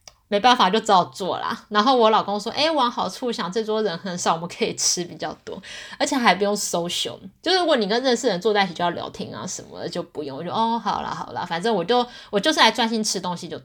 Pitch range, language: 175-240 Hz, Chinese